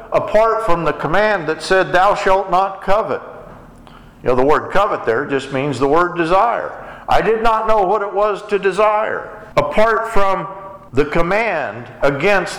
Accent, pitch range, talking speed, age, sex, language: American, 155-215 Hz, 165 wpm, 50-69, male, English